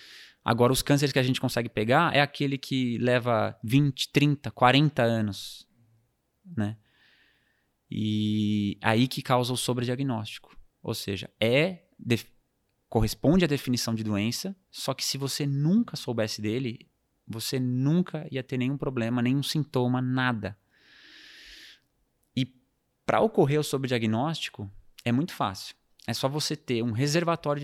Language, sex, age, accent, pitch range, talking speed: Portuguese, male, 20-39, Brazilian, 110-135 Hz, 135 wpm